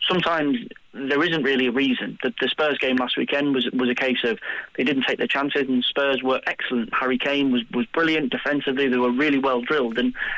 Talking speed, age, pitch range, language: 220 wpm, 30-49, 125-145 Hz, English